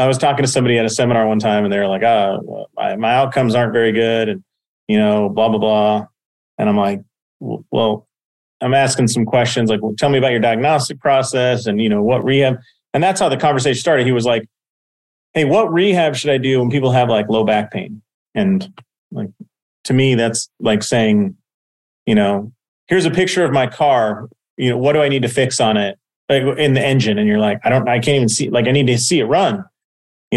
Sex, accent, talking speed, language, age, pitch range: male, American, 225 wpm, English, 30-49, 110-145 Hz